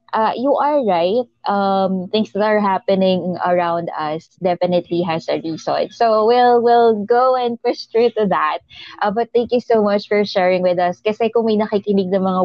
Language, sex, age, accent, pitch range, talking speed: English, female, 20-39, Filipino, 175-225 Hz, 190 wpm